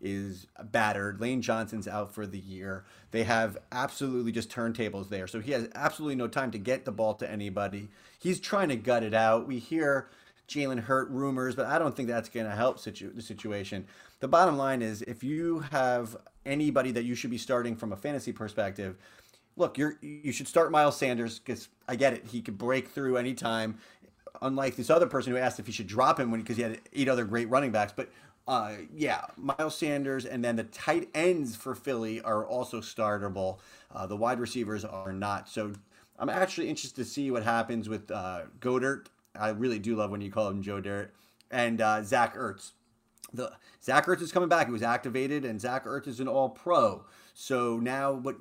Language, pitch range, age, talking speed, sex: English, 110-135 Hz, 30-49, 205 wpm, male